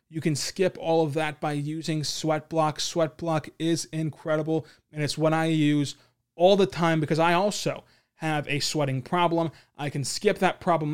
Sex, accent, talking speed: male, American, 175 wpm